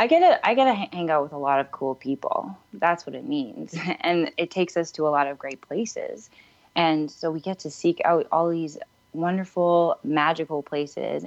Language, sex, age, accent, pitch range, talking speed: English, female, 20-39, American, 145-175 Hz, 200 wpm